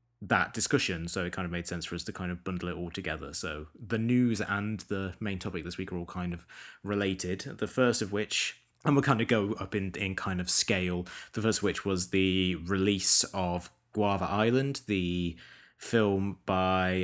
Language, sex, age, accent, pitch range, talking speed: English, male, 20-39, British, 90-105 Hz, 205 wpm